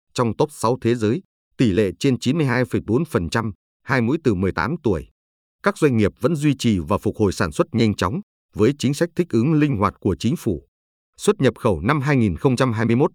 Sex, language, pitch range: male, Vietnamese, 100-135 Hz